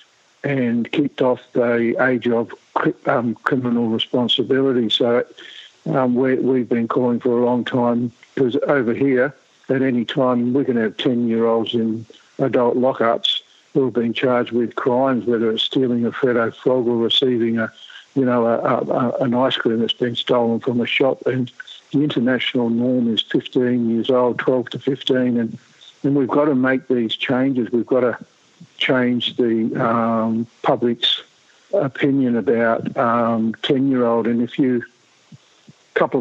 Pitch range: 115-130 Hz